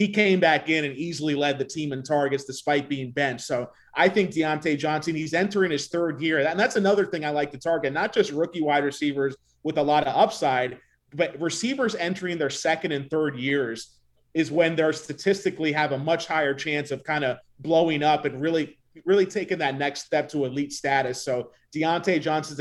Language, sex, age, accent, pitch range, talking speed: English, male, 30-49, American, 140-160 Hz, 205 wpm